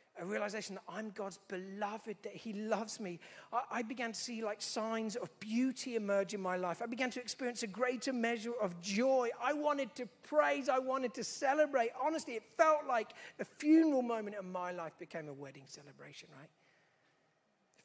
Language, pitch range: English, 175-230 Hz